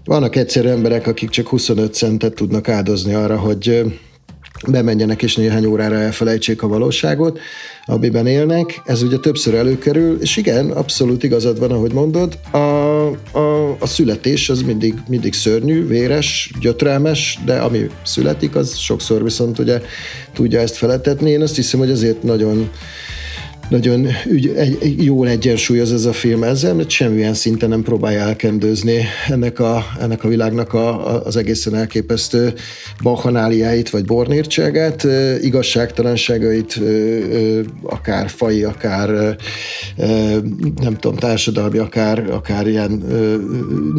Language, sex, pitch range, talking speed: Hungarian, male, 110-130 Hz, 135 wpm